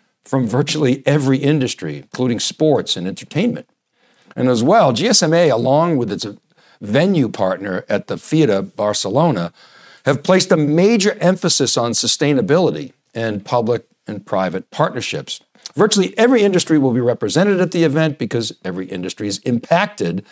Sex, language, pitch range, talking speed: male, English, 105-155 Hz, 140 wpm